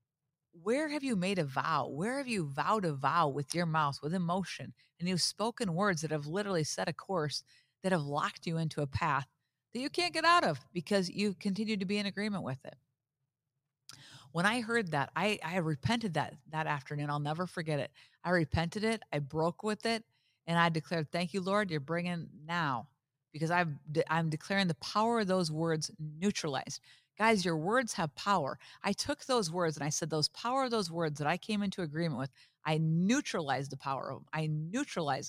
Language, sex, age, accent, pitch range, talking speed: English, female, 50-69, American, 145-190 Hz, 200 wpm